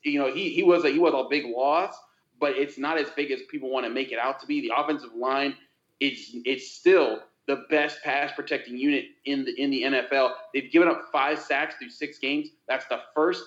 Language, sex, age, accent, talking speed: English, male, 30-49, American, 230 wpm